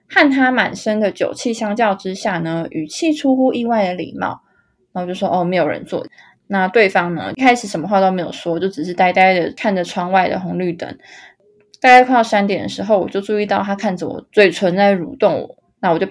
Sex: female